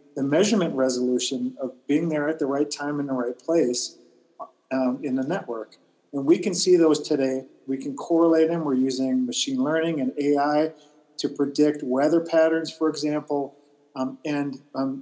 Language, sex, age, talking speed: English, male, 40-59, 170 wpm